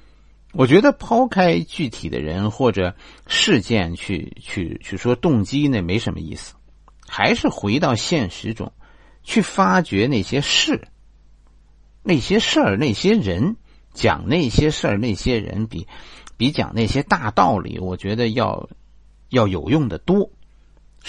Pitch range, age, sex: 75-120 Hz, 50-69, male